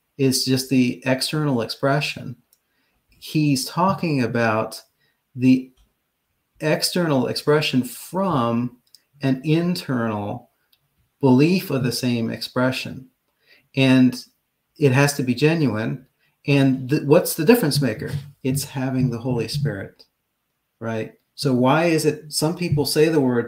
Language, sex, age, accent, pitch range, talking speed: English, male, 40-59, American, 115-140 Hz, 115 wpm